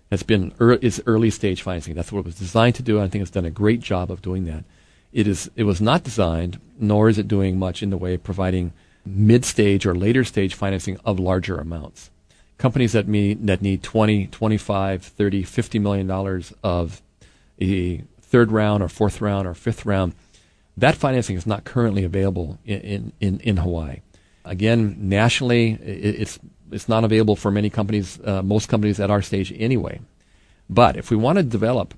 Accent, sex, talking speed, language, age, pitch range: American, male, 200 wpm, English, 40-59, 90-110 Hz